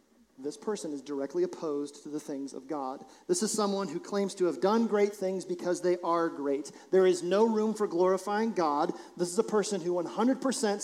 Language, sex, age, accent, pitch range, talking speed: English, male, 40-59, American, 170-225 Hz, 205 wpm